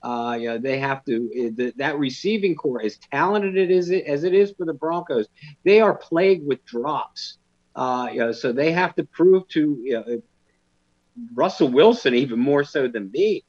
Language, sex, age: English, male, 50-69